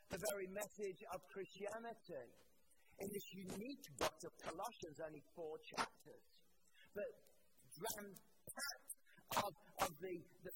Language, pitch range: English, 185-240 Hz